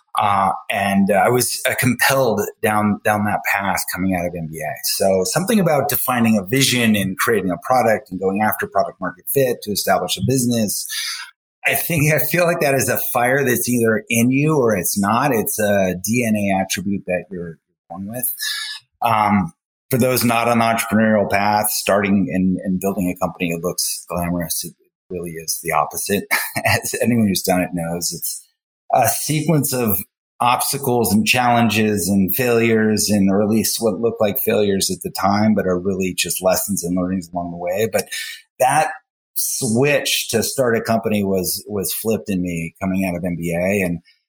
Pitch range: 95-125 Hz